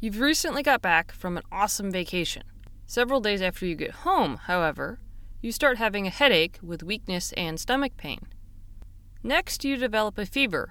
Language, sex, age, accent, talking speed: English, female, 30-49, American, 170 wpm